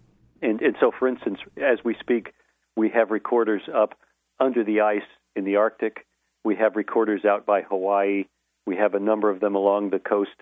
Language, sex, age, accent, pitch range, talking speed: English, male, 40-59, American, 95-110 Hz, 190 wpm